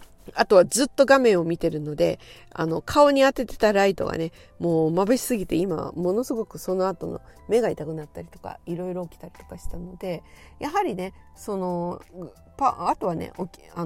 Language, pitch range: Japanese, 170-240 Hz